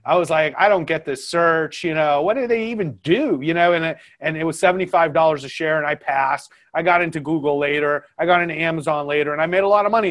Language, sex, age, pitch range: English, male, 30-49, 145-180 Hz